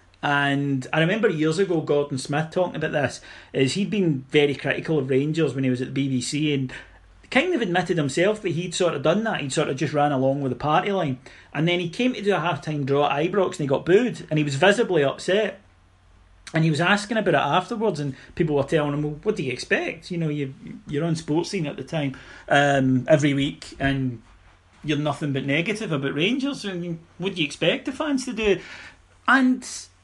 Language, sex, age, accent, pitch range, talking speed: English, male, 30-49, British, 130-175 Hz, 220 wpm